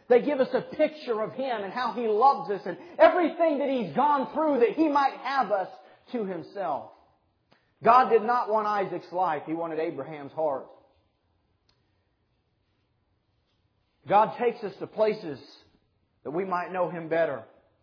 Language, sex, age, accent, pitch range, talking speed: English, male, 40-59, American, 165-265 Hz, 155 wpm